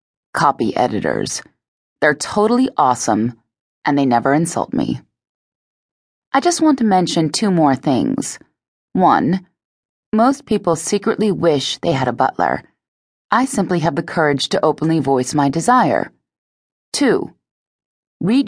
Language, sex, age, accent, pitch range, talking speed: English, female, 30-49, American, 150-215 Hz, 125 wpm